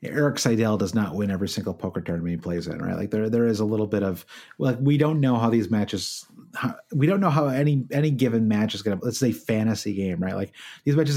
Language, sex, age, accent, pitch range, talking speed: English, male, 30-49, American, 105-135 Hz, 260 wpm